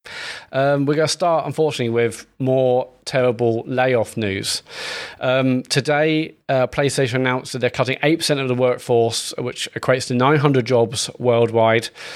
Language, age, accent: English, 20-39, British